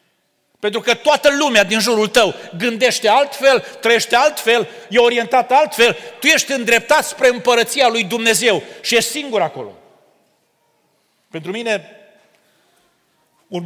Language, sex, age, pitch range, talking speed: Romanian, male, 40-59, 180-230 Hz, 125 wpm